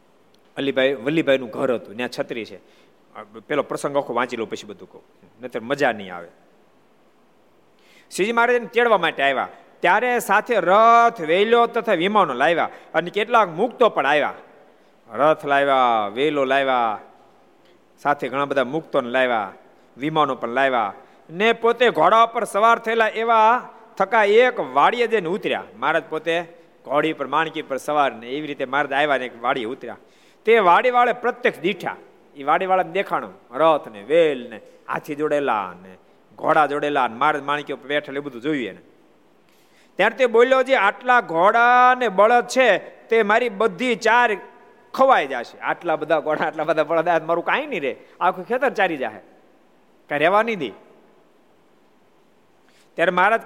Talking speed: 95 wpm